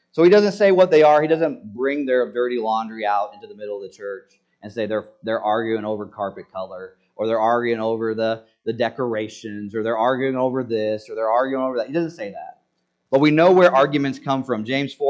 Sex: male